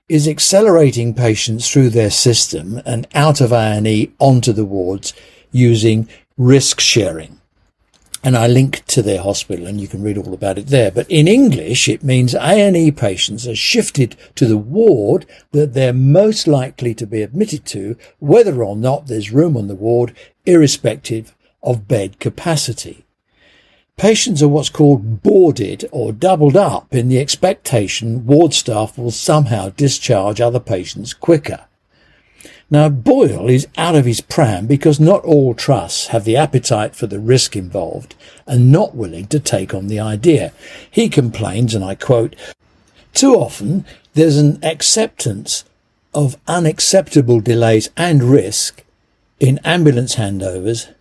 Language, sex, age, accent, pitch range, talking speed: English, male, 60-79, British, 110-150 Hz, 145 wpm